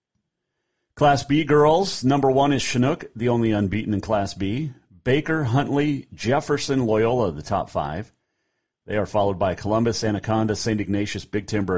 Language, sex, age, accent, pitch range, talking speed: English, male, 40-59, American, 90-120 Hz, 155 wpm